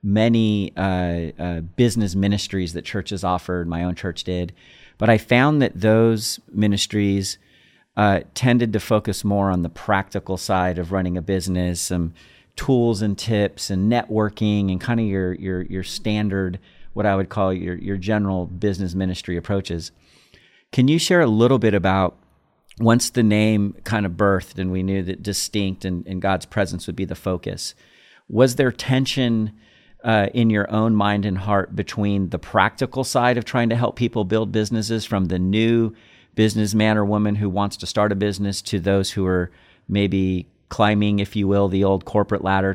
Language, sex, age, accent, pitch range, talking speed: English, male, 40-59, American, 95-110 Hz, 180 wpm